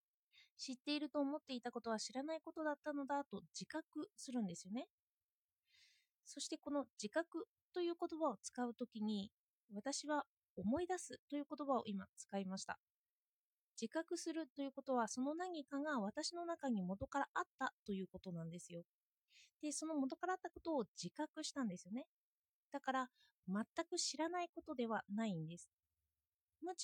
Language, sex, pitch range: Japanese, female, 225-310 Hz